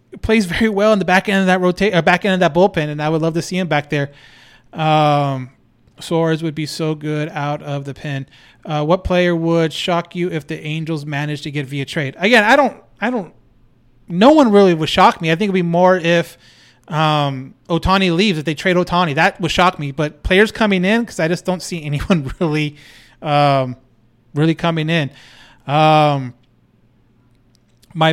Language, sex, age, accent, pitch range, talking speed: English, male, 30-49, American, 145-185 Hz, 200 wpm